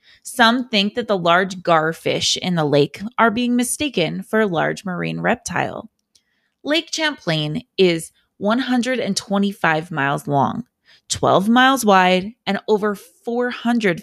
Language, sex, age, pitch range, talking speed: English, female, 20-39, 175-245 Hz, 125 wpm